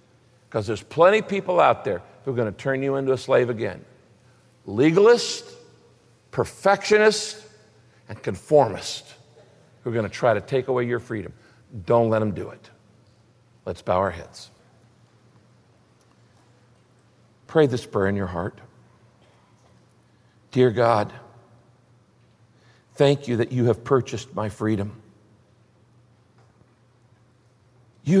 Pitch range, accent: 120-160 Hz, American